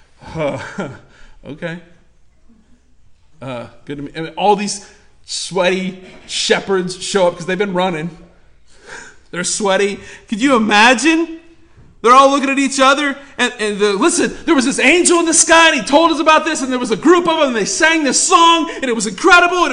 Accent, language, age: American, English, 40-59